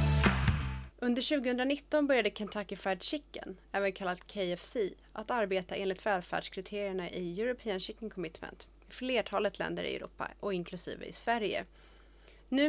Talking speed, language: 130 wpm, Swedish